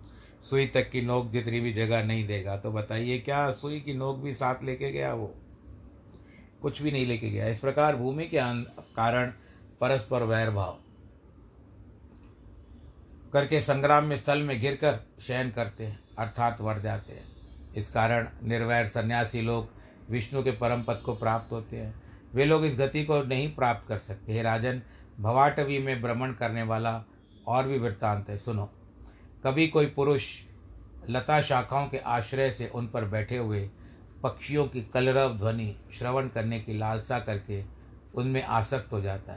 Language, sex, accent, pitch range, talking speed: Hindi, male, native, 105-130 Hz, 160 wpm